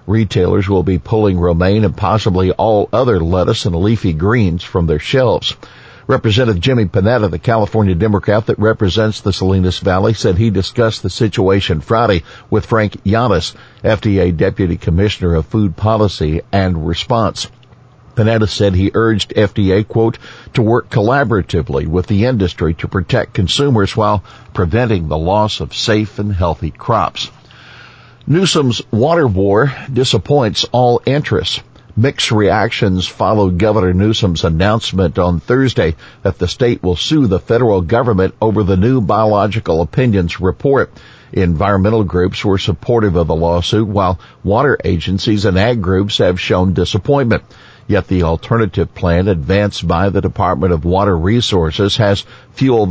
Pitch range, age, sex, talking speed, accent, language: 95-115 Hz, 50-69, male, 140 wpm, American, English